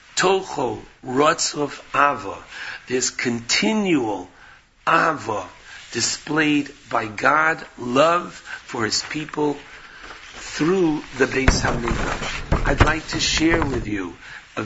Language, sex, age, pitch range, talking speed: English, male, 60-79, 130-160 Hz, 100 wpm